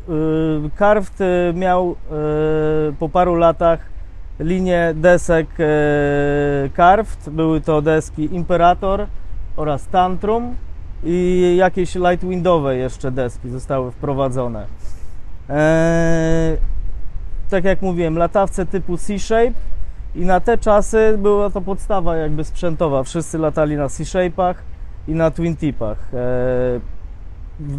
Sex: male